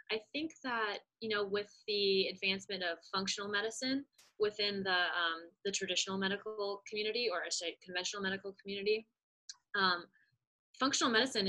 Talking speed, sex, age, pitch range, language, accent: 135 wpm, female, 20-39, 175-215 Hz, English, American